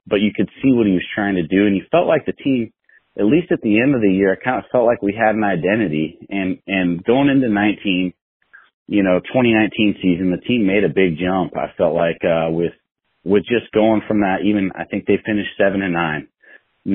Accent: American